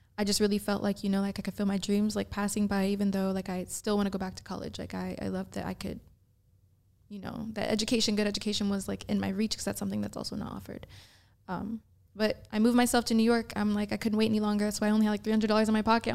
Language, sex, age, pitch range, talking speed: English, female, 20-39, 190-210 Hz, 290 wpm